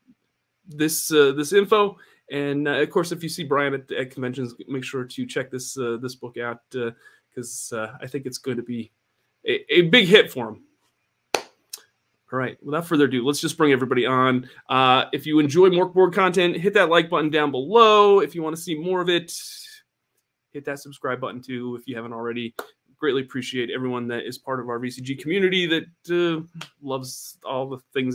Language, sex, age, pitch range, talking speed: English, male, 30-49, 125-165 Hz, 205 wpm